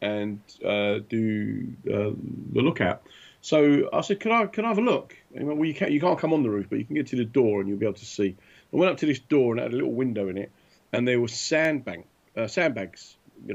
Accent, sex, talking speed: British, male, 260 wpm